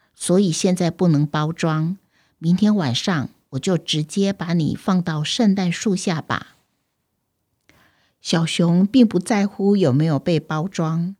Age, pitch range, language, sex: 50-69, 160-225 Hz, Chinese, female